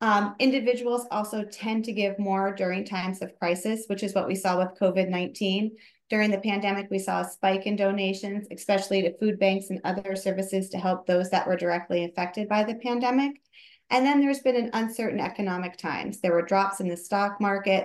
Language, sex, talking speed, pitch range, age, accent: English, female, 200 wpm, 190-230 Hz, 30-49, American